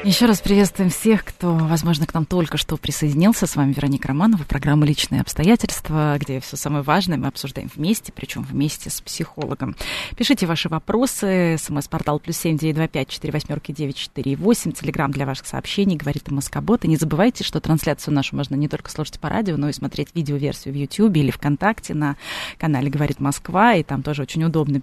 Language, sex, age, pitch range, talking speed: Russian, female, 20-39, 145-195 Hz, 175 wpm